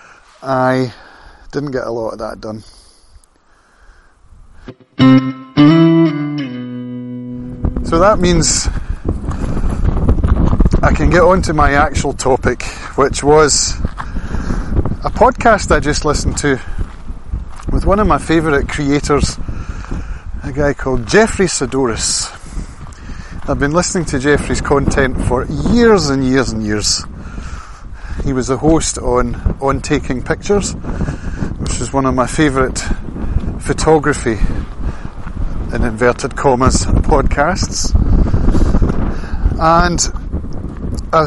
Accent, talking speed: British, 105 wpm